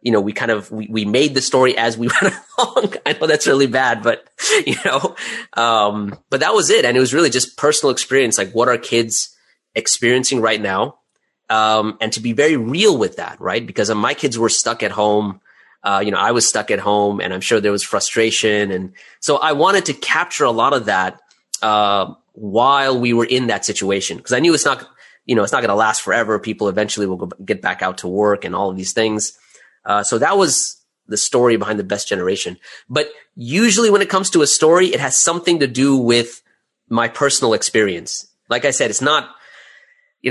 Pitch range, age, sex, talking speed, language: 105-130 Hz, 30-49, male, 220 wpm, English